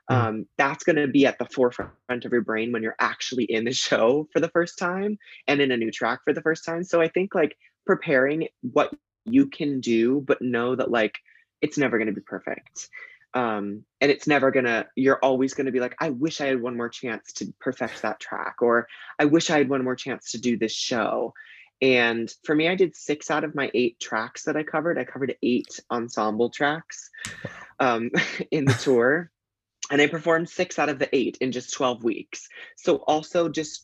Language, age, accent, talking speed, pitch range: English, 20-39, American, 210 wpm, 120-155 Hz